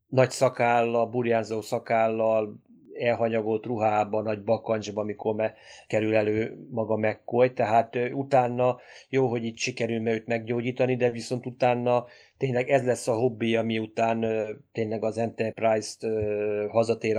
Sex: male